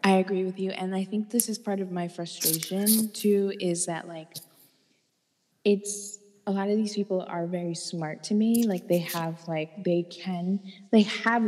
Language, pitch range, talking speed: English, 165-210 Hz, 190 wpm